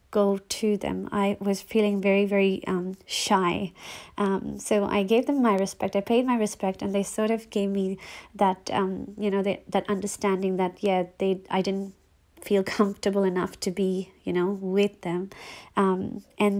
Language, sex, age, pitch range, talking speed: English, female, 30-49, 190-210 Hz, 180 wpm